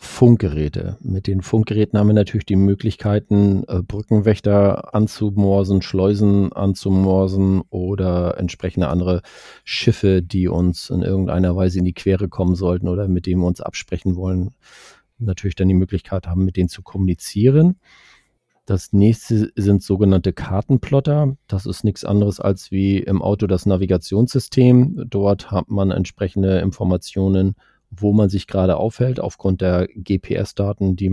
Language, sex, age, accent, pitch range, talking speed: German, male, 40-59, German, 95-110 Hz, 140 wpm